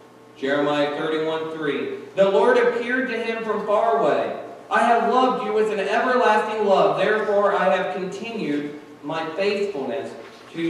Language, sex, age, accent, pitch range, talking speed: English, male, 40-59, American, 160-215 Hz, 145 wpm